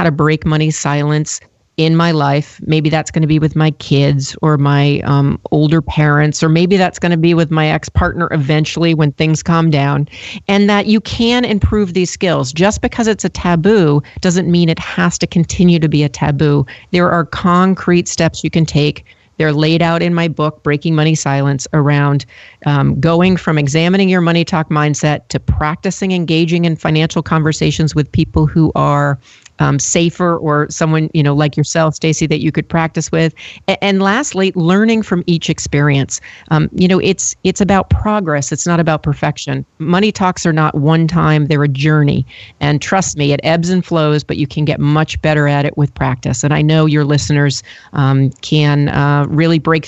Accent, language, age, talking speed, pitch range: American, English, 40-59, 190 wpm, 150-175 Hz